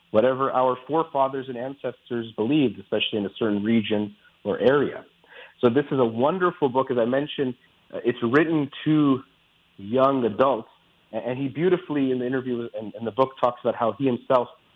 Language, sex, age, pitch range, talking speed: English, male, 40-59, 110-135 Hz, 170 wpm